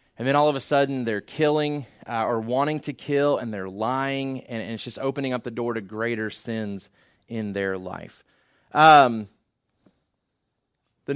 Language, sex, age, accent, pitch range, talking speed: English, male, 30-49, American, 115-145 Hz, 170 wpm